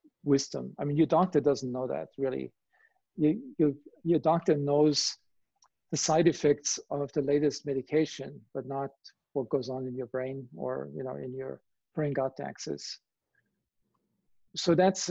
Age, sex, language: 50-69, male, English